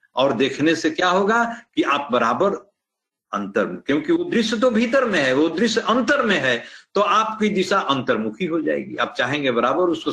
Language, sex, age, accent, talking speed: Hindi, male, 60-79, native, 190 wpm